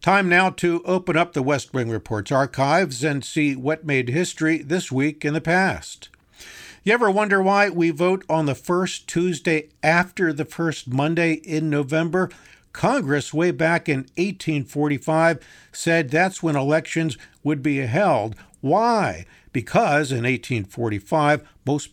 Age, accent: 50-69, American